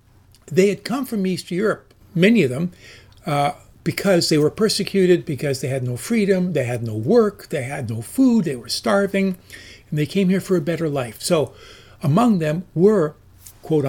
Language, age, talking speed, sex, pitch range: English, 60-79, 185 wpm, male, 130-180 Hz